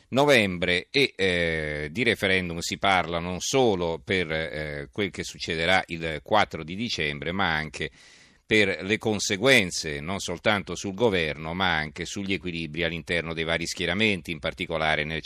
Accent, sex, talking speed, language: native, male, 150 wpm, Italian